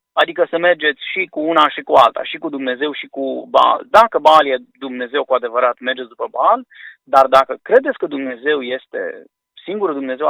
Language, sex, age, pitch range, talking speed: Romanian, male, 30-49, 135-225 Hz, 185 wpm